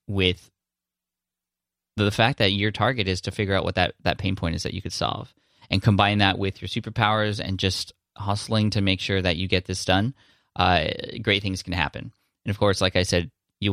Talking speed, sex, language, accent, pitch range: 215 wpm, male, English, American, 95-110 Hz